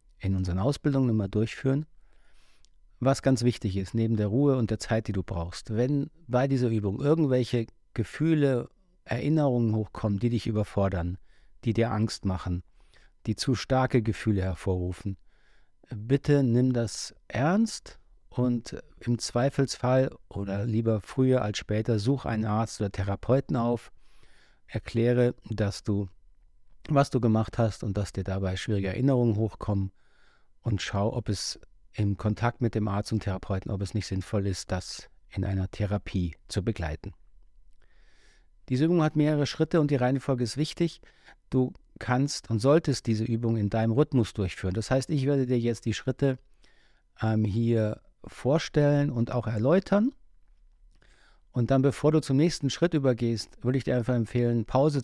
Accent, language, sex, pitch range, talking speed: German, German, male, 105-130 Hz, 155 wpm